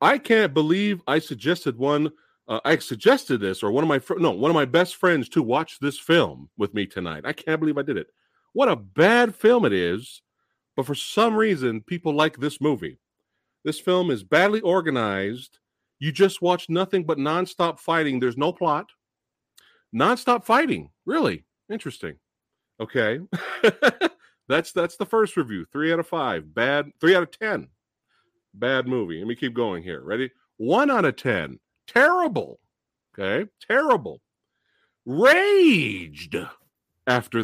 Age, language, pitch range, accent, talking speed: 40-59, English, 145-220 Hz, American, 155 wpm